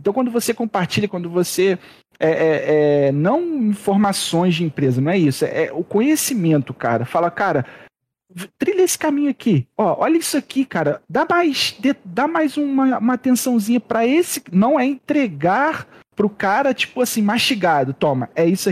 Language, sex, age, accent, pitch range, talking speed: Portuguese, male, 40-59, Brazilian, 175-255 Hz, 175 wpm